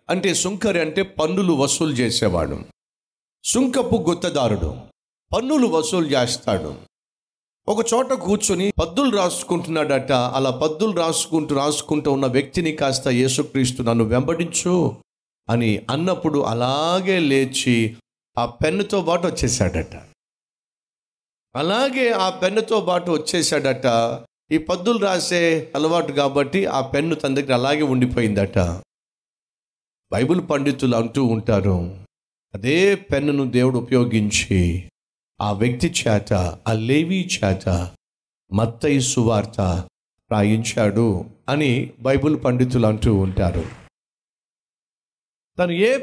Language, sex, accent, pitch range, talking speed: Telugu, male, native, 115-175 Hz, 95 wpm